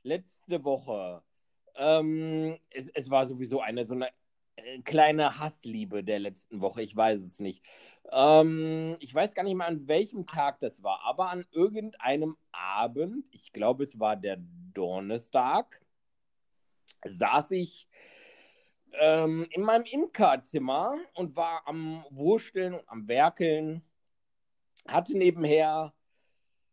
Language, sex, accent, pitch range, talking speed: German, male, German, 115-165 Hz, 120 wpm